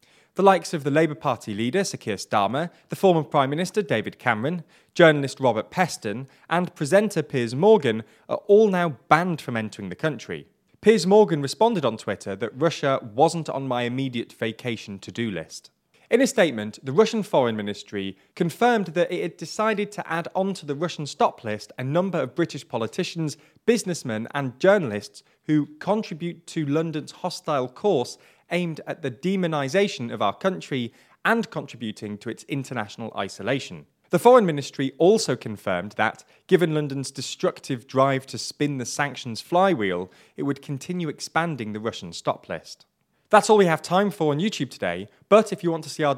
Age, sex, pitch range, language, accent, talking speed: 30-49, male, 115-180 Hz, English, British, 170 wpm